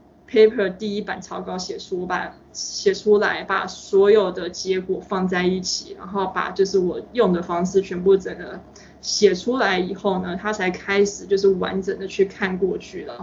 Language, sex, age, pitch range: Chinese, female, 20-39, 185-220 Hz